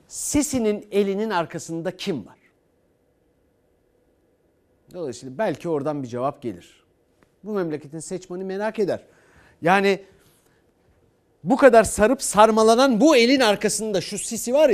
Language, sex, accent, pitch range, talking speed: Turkish, male, native, 150-230 Hz, 110 wpm